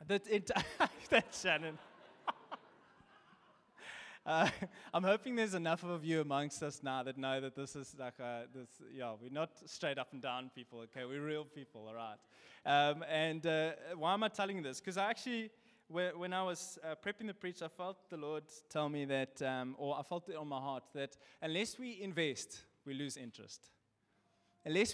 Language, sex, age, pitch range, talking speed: English, male, 20-39, 140-185 Hz, 190 wpm